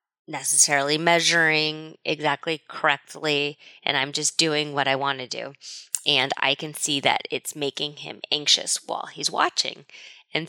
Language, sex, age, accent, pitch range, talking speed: English, female, 20-39, American, 150-215 Hz, 150 wpm